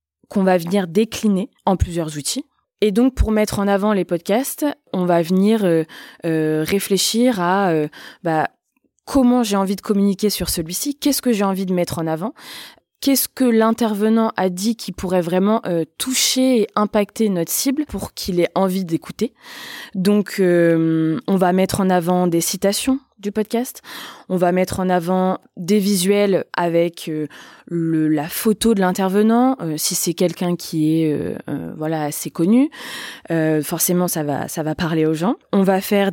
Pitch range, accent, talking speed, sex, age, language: 170-225 Hz, French, 175 wpm, female, 20-39, French